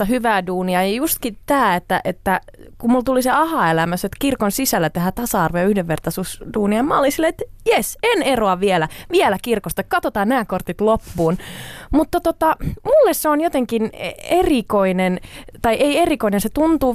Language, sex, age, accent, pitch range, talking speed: Finnish, female, 20-39, native, 180-255 Hz, 160 wpm